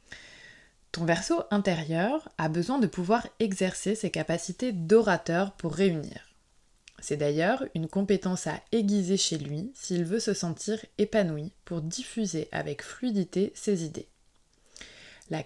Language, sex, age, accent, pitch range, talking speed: French, female, 20-39, French, 160-215 Hz, 130 wpm